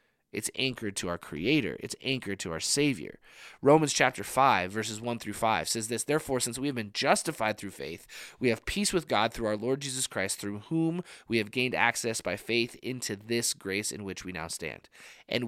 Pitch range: 105-145 Hz